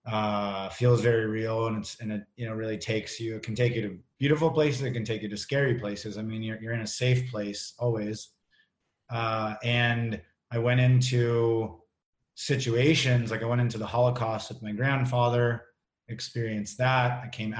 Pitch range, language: 110-125 Hz, English